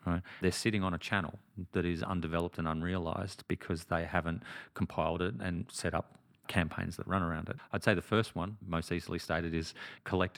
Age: 30-49